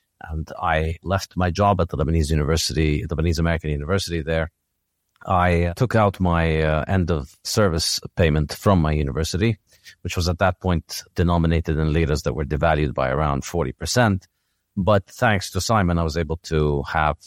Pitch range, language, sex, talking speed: 75-85 Hz, English, male, 165 wpm